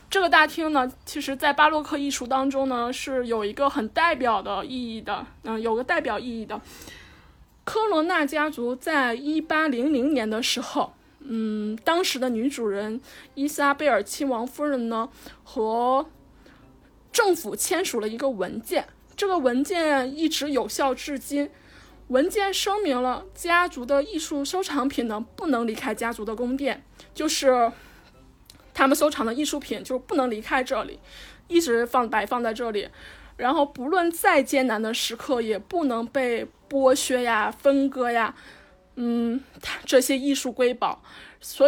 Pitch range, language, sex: 240-305 Hz, Chinese, female